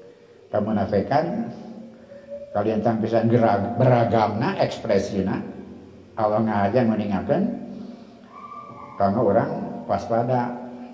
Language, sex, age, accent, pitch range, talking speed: Indonesian, male, 50-69, native, 100-130 Hz, 80 wpm